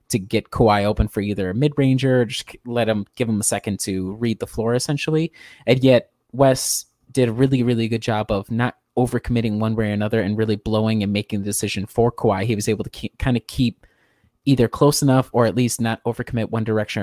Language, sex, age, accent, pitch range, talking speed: English, male, 20-39, American, 105-120 Hz, 235 wpm